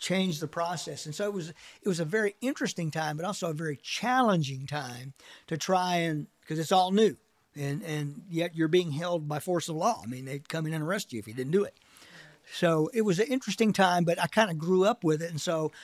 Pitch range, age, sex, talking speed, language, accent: 150-195 Hz, 50-69, male, 245 wpm, English, American